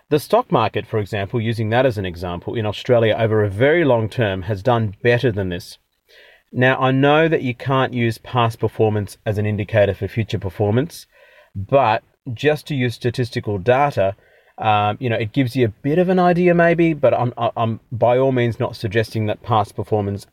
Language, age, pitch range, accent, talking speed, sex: English, 30-49, 105-130 Hz, Australian, 195 wpm, male